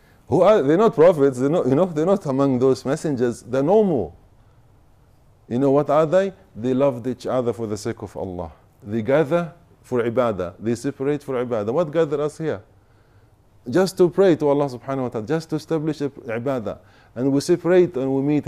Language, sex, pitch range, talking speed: English, male, 115-145 Hz, 200 wpm